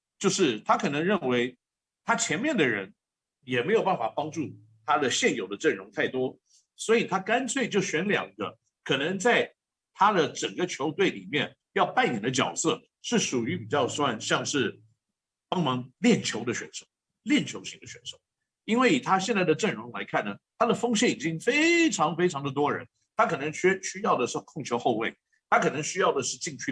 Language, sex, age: Chinese, male, 50-69